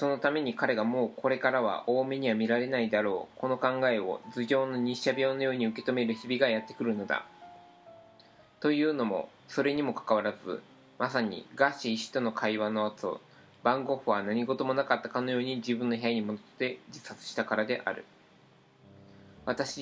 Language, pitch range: Japanese, 115-135 Hz